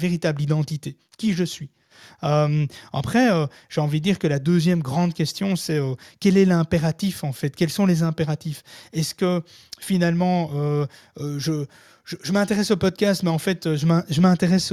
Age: 30-49